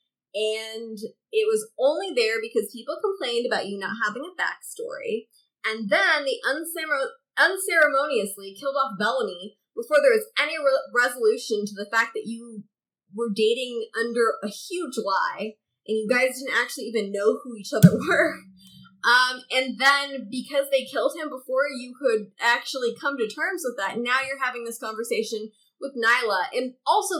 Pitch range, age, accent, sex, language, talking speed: 215-280 Hz, 20-39, American, female, English, 160 wpm